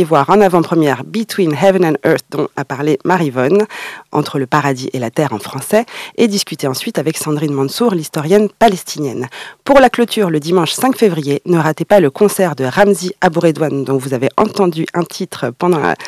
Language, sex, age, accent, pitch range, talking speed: French, female, 40-59, French, 150-200 Hz, 200 wpm